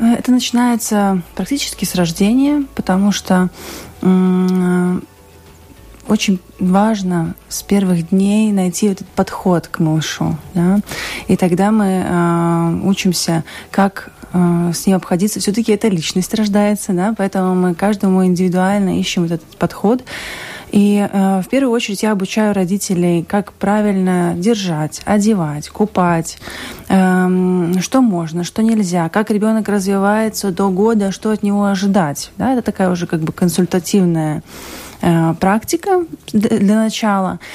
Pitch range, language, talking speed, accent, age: 180-210 Hz, Russian, 120 wpm, native, 20-39